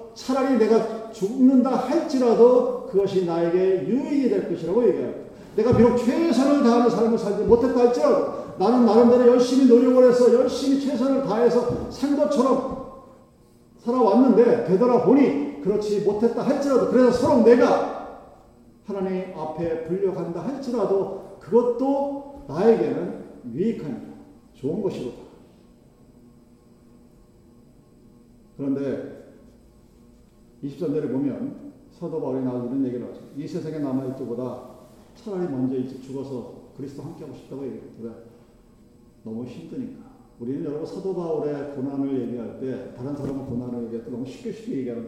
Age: 40-59